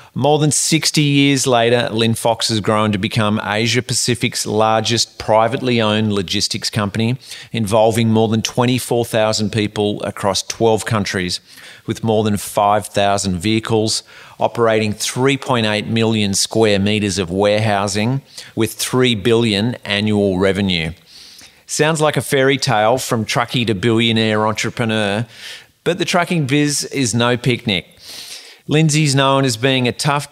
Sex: male